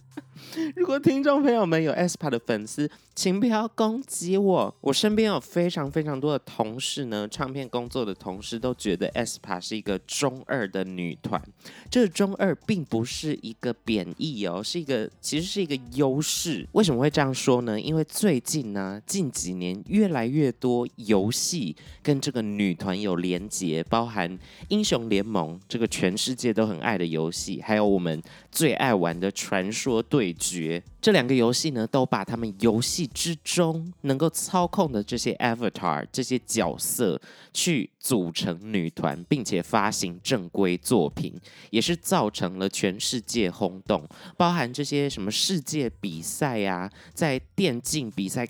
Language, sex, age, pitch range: Chinese, male, 20-39, 100-160 Hz